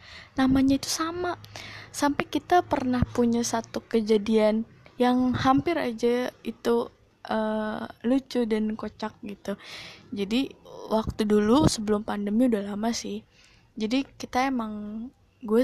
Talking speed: 115 wpm